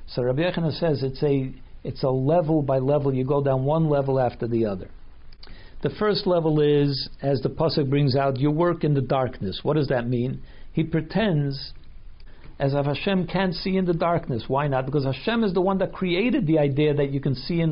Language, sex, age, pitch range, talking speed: English, male, 60-79, 140-175 Hz, 210 wpm